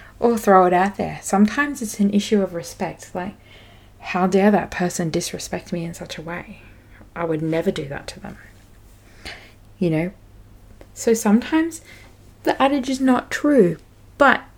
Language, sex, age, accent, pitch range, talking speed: English, female, 20-39, Australian, 150-210 Hz, 160 wpm